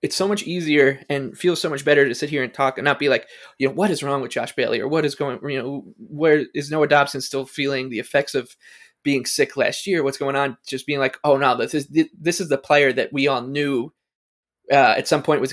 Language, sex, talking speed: English, male, 265 wpm